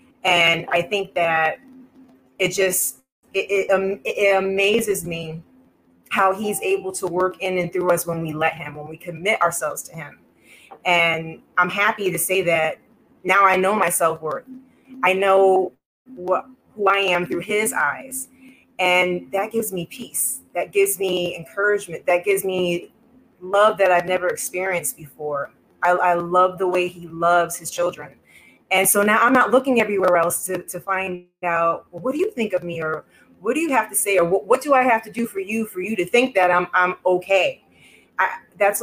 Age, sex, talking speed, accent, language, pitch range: 30-49, female, 190 wpm, American, English, 175-210 Hz